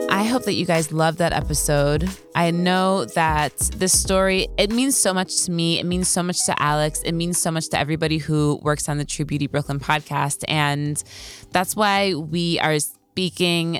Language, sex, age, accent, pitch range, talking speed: English, female, 20-39, American, 150-180 Hz, 195 wpm